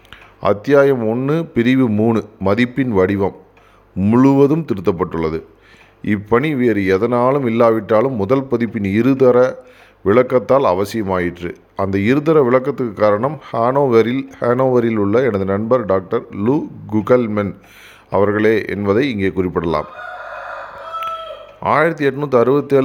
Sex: male